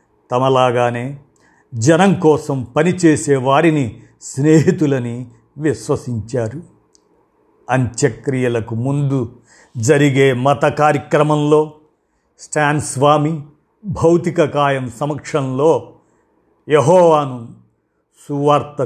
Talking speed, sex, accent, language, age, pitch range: 60 wpm, male, native, Telugu, 50-69, 125-150 Hz